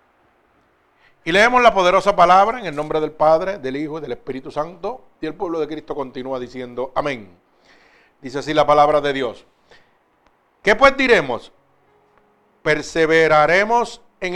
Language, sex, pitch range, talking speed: Spanish, male, 165-240 Hz, 145 wpm